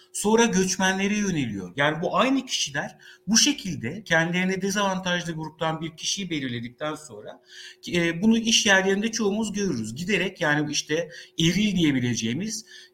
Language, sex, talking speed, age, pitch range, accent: Turkish, male, 120 wpm, 60-79, 160-215 Hz, native